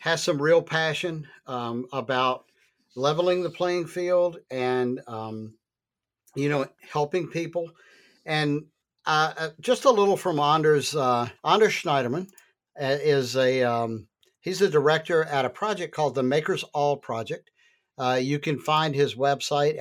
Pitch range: 130-170 Hz